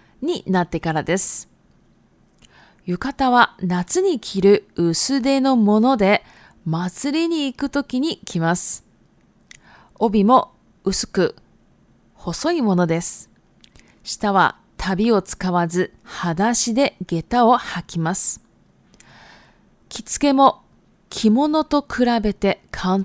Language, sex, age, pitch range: Japanese, female, 20-39, 185-270 Hz